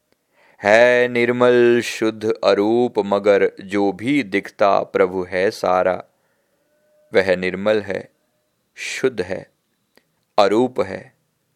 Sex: male